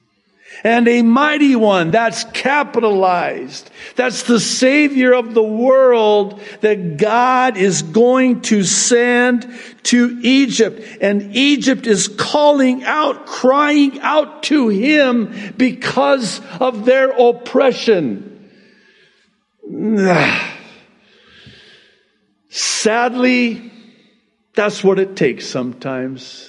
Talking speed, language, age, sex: 90 wpm, English, 50-69, male